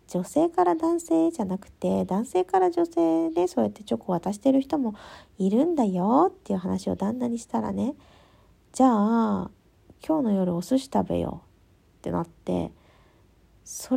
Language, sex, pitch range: Japanese, female, 175-240 Hz